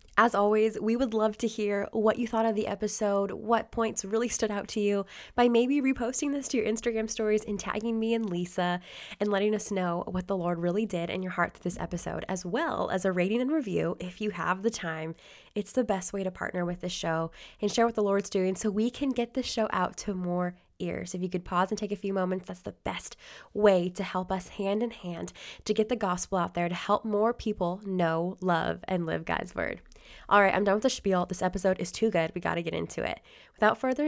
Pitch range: 190-230 Hz